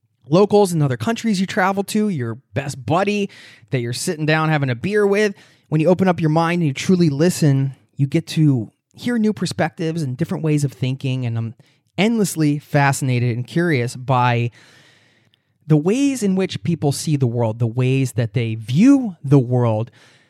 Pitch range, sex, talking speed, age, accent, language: 125-165 Hz, male, 180 wpm, 20-39, American, English